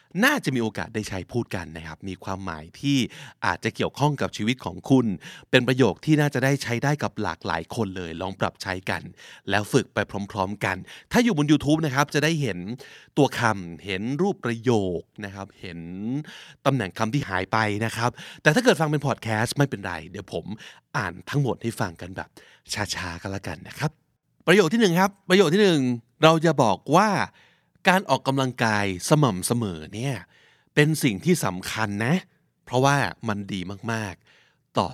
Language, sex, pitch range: Thai, male, 100-150 Hz